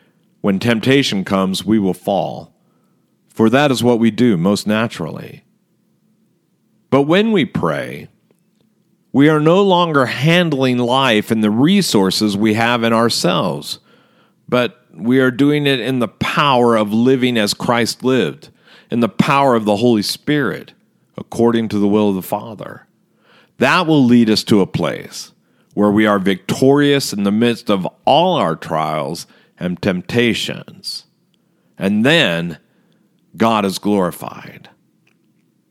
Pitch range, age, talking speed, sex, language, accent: 110-180 Hz, 50-69, 140 wpm, male, English, American